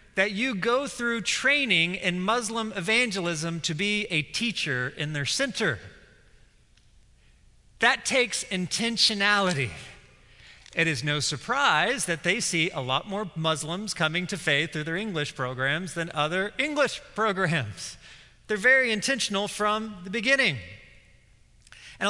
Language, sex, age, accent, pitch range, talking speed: English, male, 40-59, American, 150-210 Hz, 130 wpm